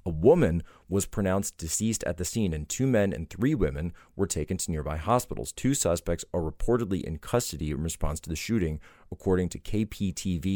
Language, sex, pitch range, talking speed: English, male, 80-105 Hz, 190 wpm